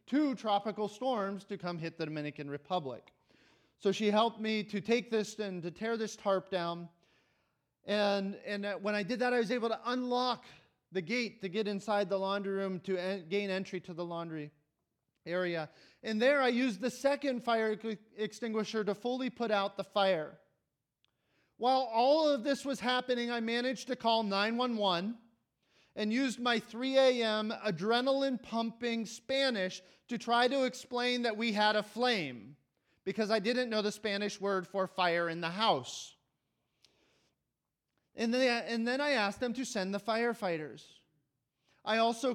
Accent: American